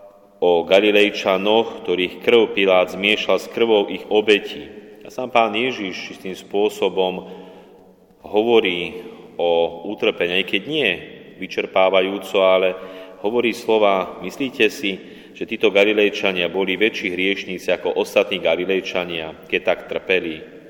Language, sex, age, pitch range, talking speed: Slovak, male, 30-49, 90-105 Hz, 120 wpm